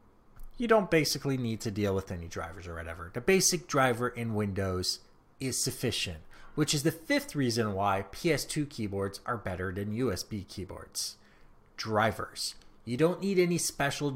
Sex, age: male, 30-49